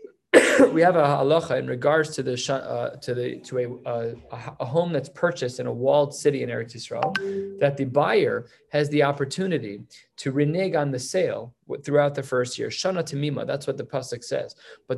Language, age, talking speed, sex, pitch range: English, 30-49, 190 wpm, male, 135-160 Hz